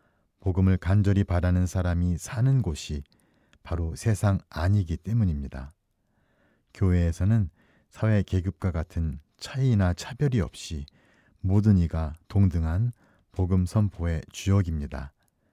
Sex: male